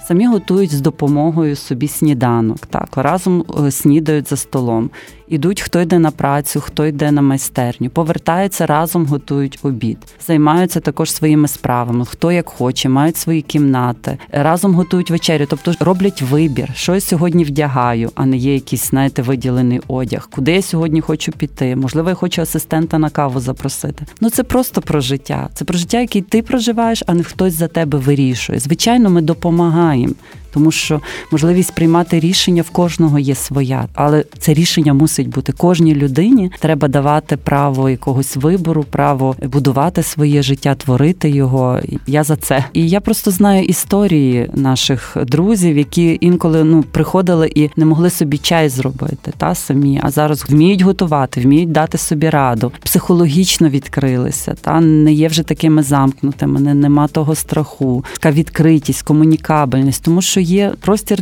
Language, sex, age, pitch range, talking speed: Ukrainian, female, 30-49, 140-170 Hz, 155 wpm